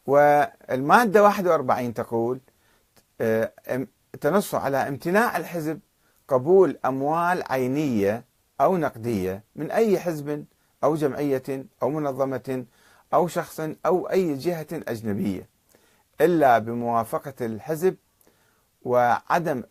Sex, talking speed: male, 90 wpm